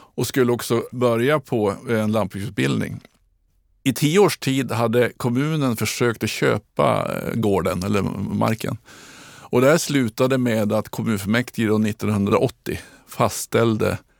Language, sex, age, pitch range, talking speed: Swedish, male, 50-69, 105-130 Hz, 125 wpm